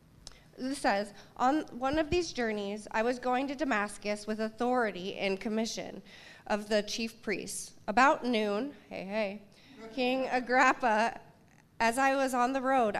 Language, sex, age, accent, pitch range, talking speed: English, female, 30-49, American, 200-240 Hz, 150 wpm